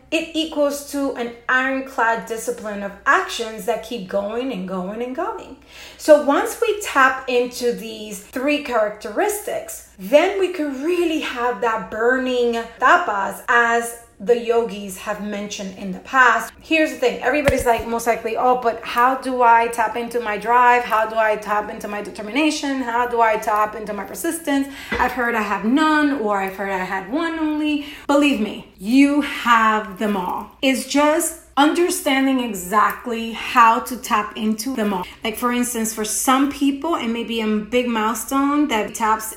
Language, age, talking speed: English, 30-49, 170 wpm